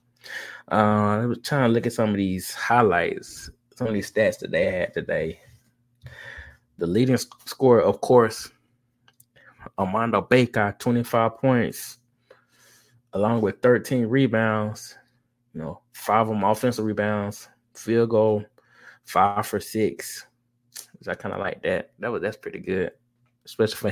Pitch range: 110-130 Hz